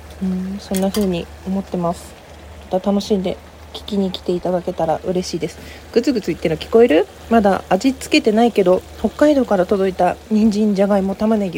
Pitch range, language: 185-230 Hz, Japanese